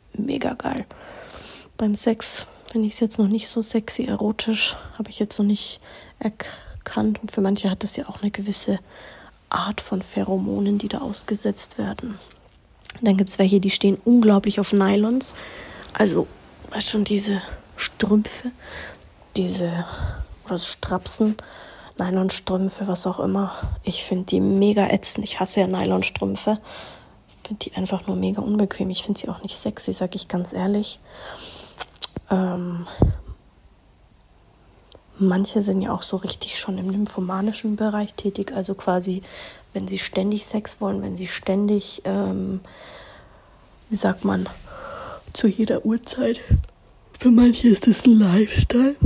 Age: 30-49